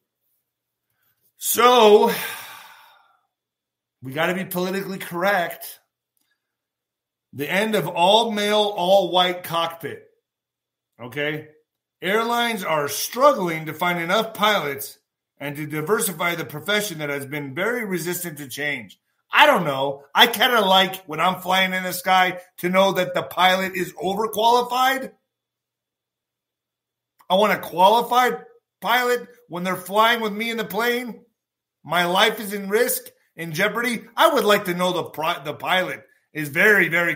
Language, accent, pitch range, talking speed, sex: English, American, 170-230 Hz, 135 wpm, male